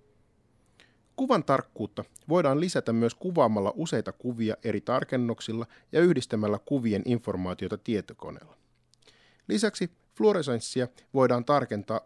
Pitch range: 105-135 Hz